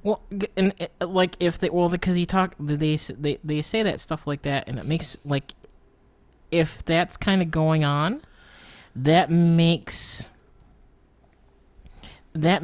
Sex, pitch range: male, 135-160 Hz